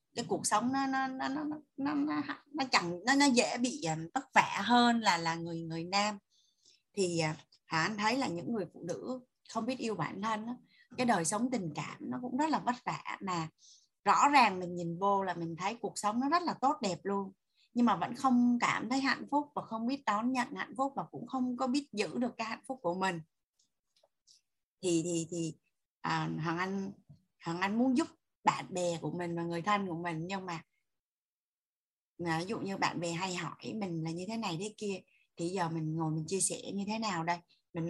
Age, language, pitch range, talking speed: 20-39, Vietnamese, 170-245 Hz, 225 wpm